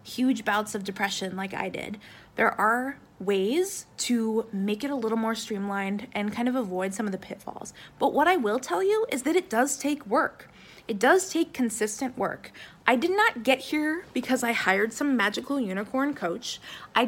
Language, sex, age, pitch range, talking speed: English, female, 20-39, 205-270 Hz, 195 wpm